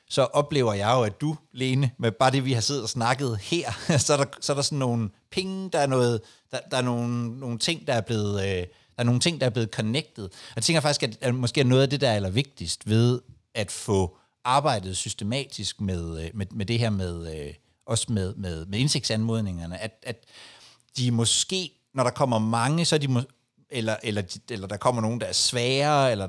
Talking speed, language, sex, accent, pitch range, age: 205 wpm, Danish, male, native, 105-135 Hz, 60-79